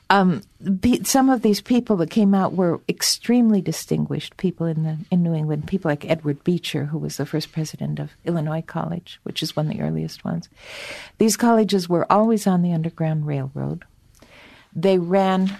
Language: English